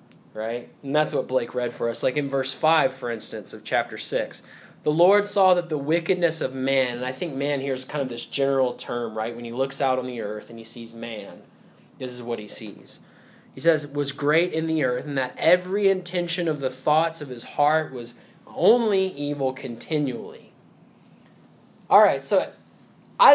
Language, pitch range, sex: English, 120-155 Hz, male